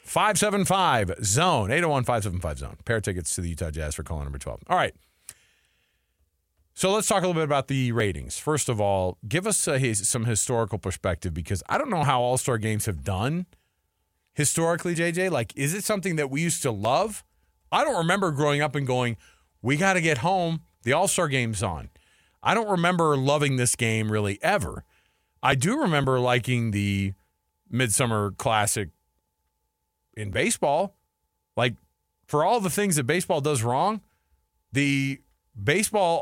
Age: 40-59